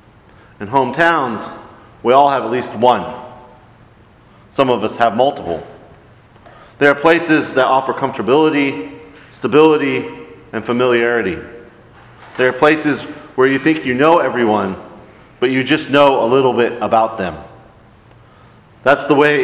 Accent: American